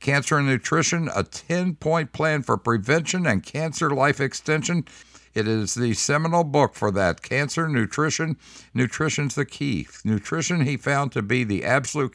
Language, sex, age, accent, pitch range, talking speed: English, male, 60-79, American, 105-140 Hz, 155 wpm